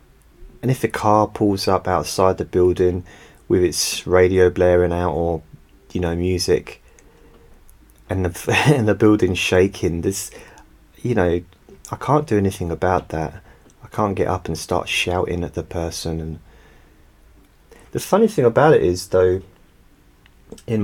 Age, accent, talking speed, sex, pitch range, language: 30-49, British, 150 wpm, male, 85-105 Hz, English